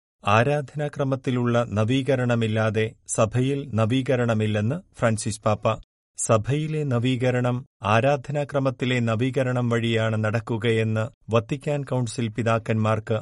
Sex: male